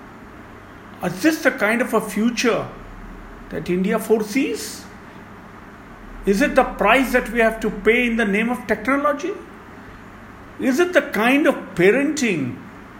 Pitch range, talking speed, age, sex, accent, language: 170-290 Hz, 140 wpm, 50-69, male, Indian, English